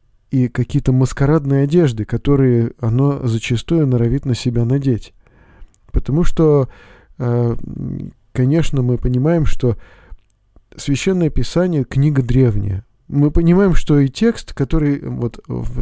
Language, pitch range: Russian, 120-145 Hz